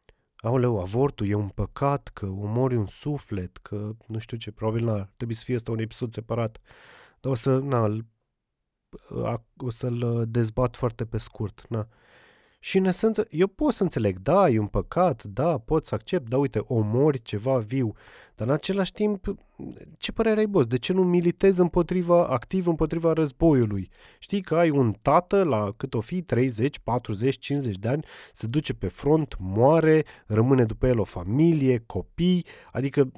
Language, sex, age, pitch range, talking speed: Romanian, male, 30-49, 110-160 Hz, 170 wpm